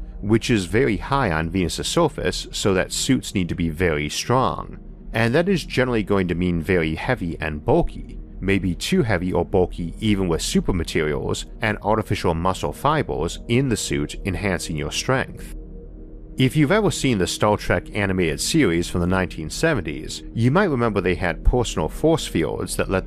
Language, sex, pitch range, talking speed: English, male, 80-115 Hz, 175 wpm